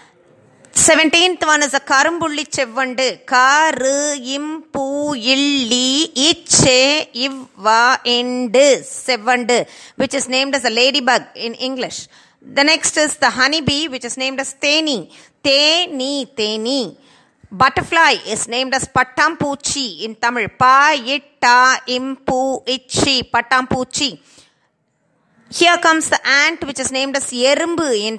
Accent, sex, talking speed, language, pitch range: native, female, 115 wpm, Tamil, 255-295 Hz